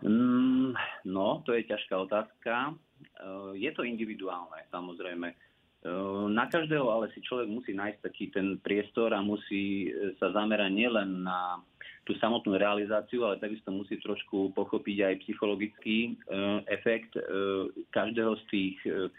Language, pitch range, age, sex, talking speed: Slovak, 95-110 Hz, 30-49, male, 120 wpm